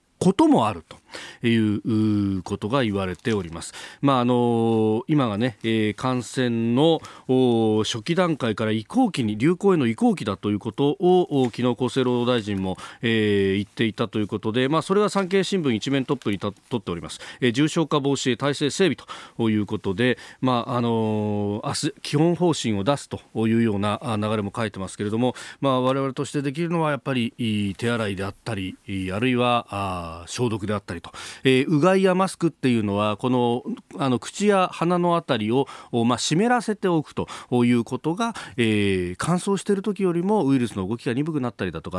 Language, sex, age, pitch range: Japanese, male, 40-59, 110-155 Hz